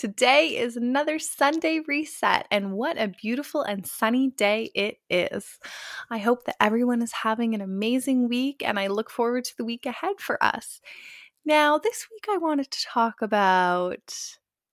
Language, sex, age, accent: English, female, 20-39, American